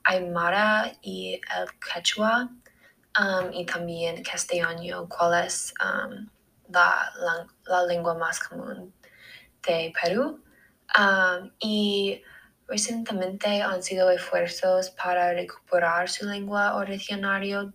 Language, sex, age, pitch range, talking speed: Spanish, female, 10-29, 180-220 Hz, 100 wpm